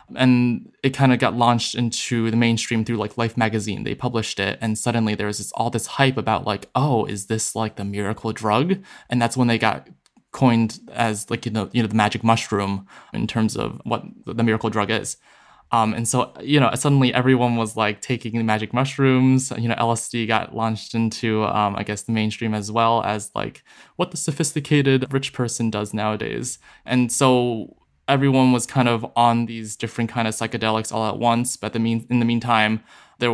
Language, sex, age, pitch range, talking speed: English, male, 20-39, 110-130 Hz, 200 wpm